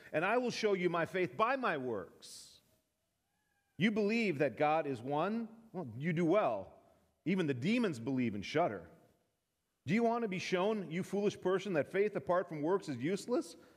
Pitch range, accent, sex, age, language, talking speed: 140-205 Hz, American, male, 40-59, English, 185 wpm